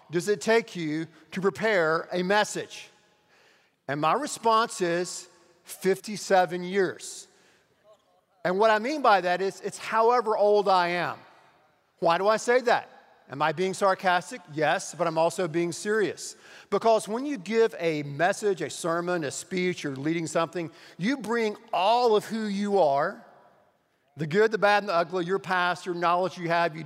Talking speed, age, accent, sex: 170 wpm, 50-69, American, male